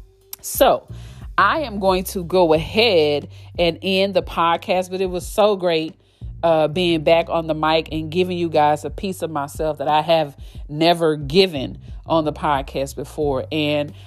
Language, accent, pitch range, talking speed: English, American, 140-175 Hz, 170 wpm